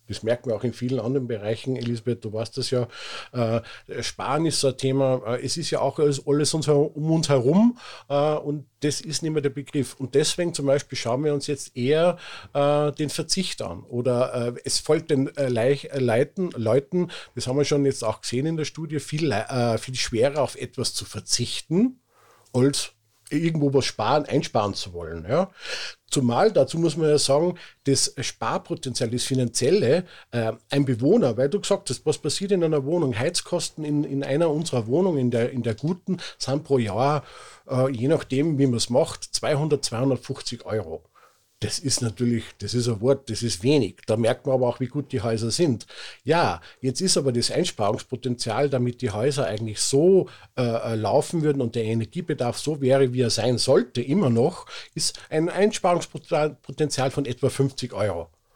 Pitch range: 120-150 Hz